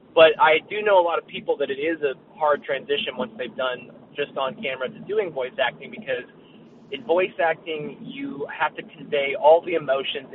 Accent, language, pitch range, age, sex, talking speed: American, English, 145-220 Hz, 20-39, male, 205 wpm